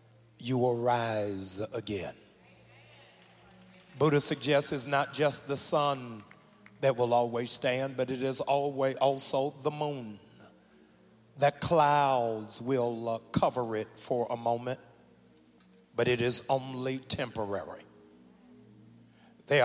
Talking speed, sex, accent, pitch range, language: 110 wpm, male, American, 120-145 Hz, English